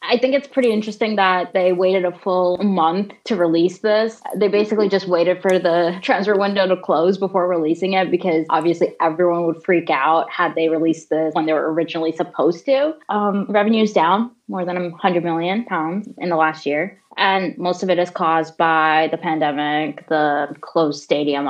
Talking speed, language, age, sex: 190 wpm, English, 20-39, female